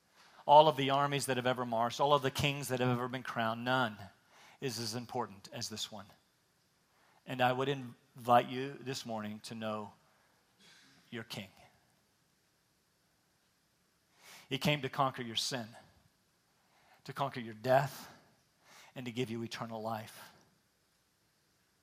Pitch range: 115-135 Hz